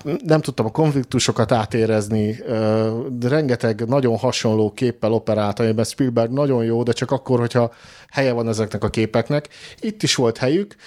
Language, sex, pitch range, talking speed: Hungarian, male, 105-130 Hz, 150 wpm